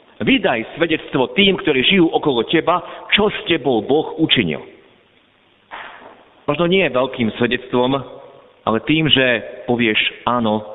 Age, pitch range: 50-69, 115-170 Hz